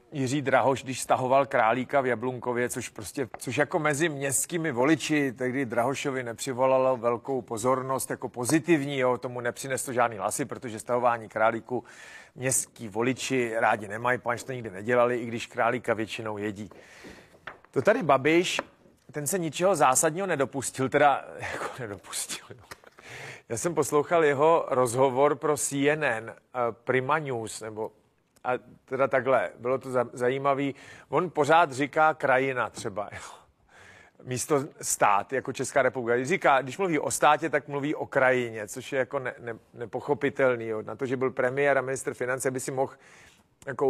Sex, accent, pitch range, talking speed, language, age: male, native, 125-145 Hz, 155 wpm, Czech, 40-59